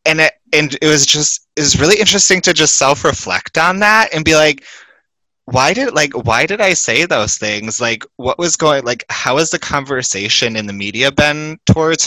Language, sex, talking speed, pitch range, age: English, male, 205 wpm, 110-150 Hz, 20-39